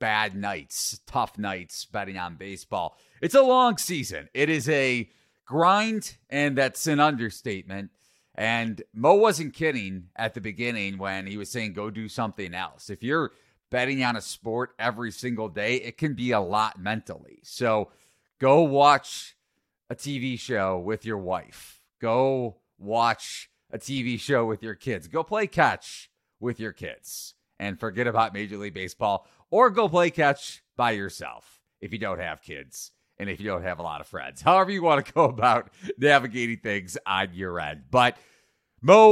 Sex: male